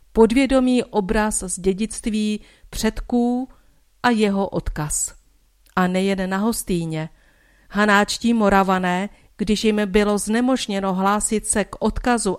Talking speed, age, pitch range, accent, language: 105 wpm, 50-69, 195-240 Hz, native, Czech